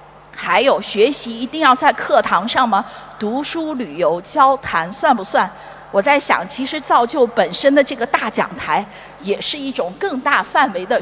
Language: Chinese